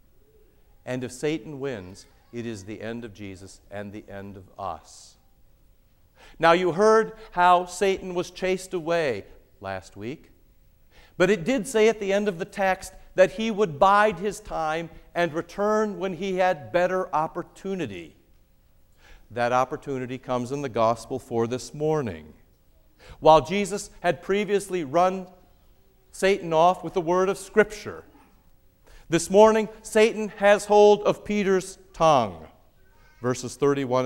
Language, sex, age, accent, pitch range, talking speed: English, male, 50-69, American, 145-210 Hz, 140 wpm